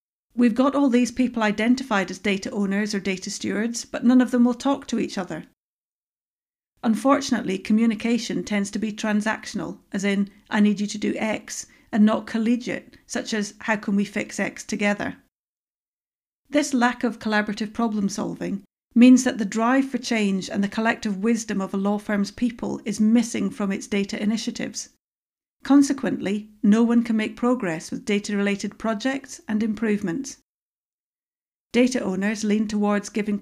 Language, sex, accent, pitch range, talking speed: English, female, British, 205-240 Hz, 160 wpm